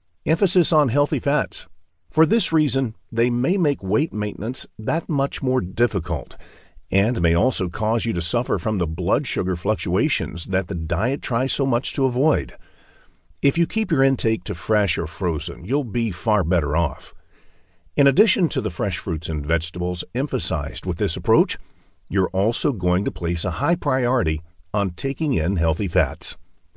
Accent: American